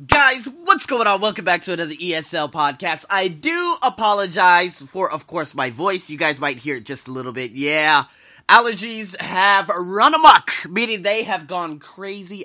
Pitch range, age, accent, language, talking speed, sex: 150-205 Hz, 20-39, American, English, 180 wpm, male